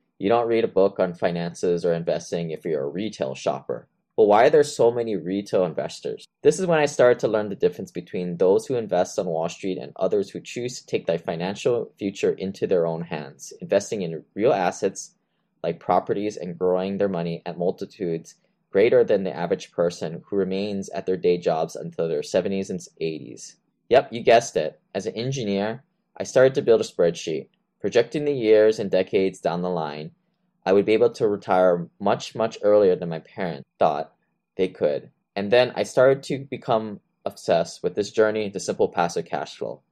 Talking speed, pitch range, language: 195 wpm, 95-160 Hz, English